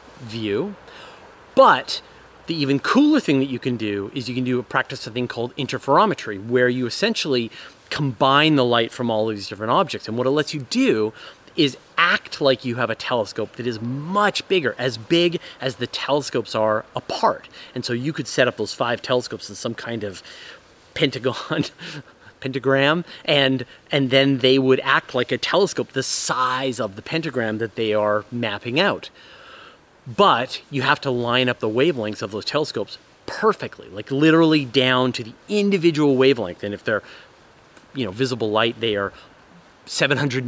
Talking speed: 175 wpm